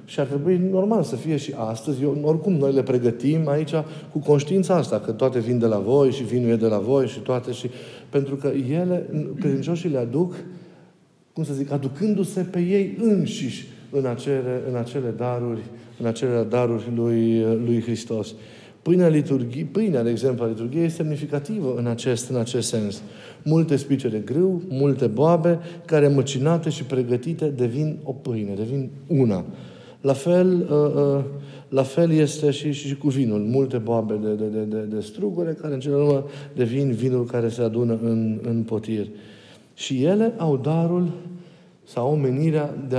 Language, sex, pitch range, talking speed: Romanian, male, 120-165 Hz, 165 wpm